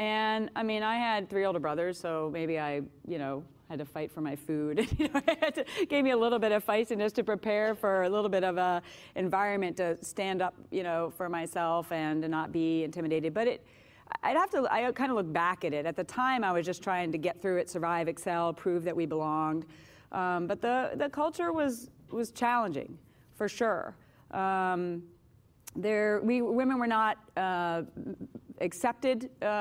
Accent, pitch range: American, 165-215 Hz